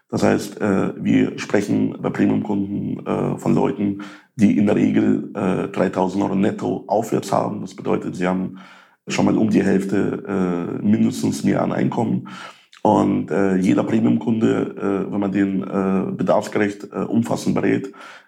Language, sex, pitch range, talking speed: German, male, 95-105 Hz, 130 wpm